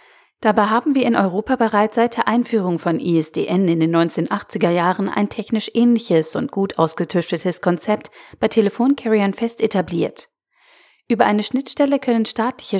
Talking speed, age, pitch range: 145 wpm, 40-59, 175-235 Hz